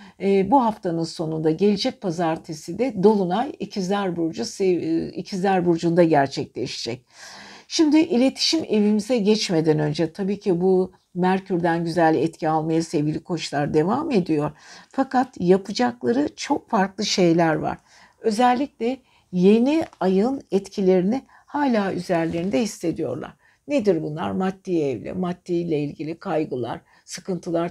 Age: 60-79